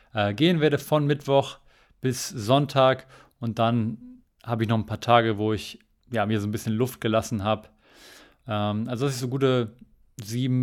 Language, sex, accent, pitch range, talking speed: German, male, German, 110-125 Hz, 170 wpm